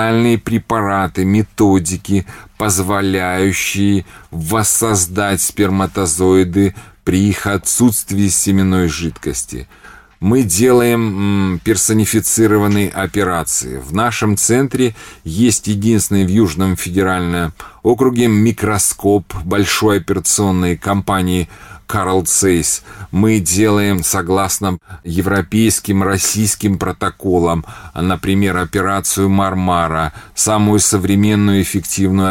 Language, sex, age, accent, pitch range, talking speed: Russian, male, 30-49, native, 95-110 Hz, 70 wpm